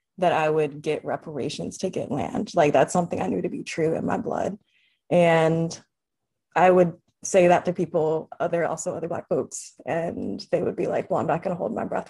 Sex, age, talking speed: female, 20-39, 220 wpm